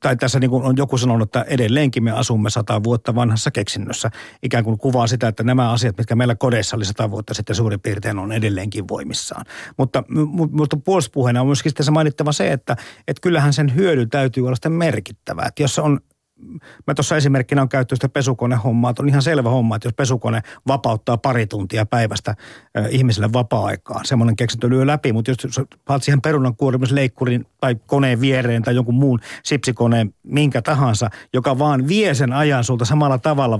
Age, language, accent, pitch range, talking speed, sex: 50-69, Finnish, native, 115-140 Hz, 180 wpm, male